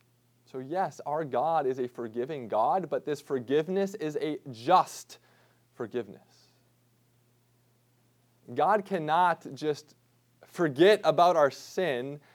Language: English